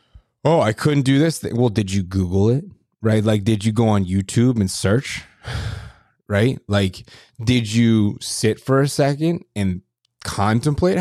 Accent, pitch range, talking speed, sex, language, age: American, 95-120 Hz, 165 wpm, male, English, 20-39